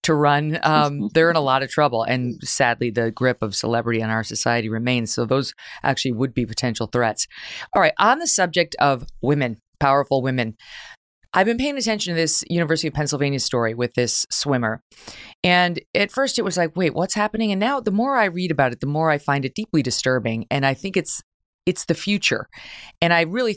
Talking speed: 210 wpm